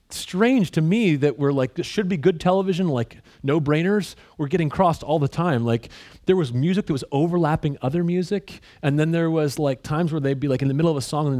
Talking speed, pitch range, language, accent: 240 wpm, 135-185 Hz, English, American